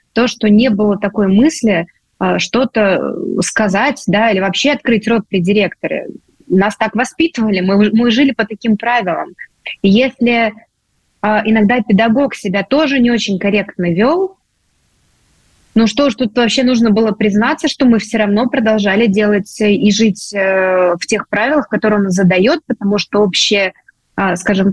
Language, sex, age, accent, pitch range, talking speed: Russian, female, 20-39, native, 200-240 Hz, 145 wpm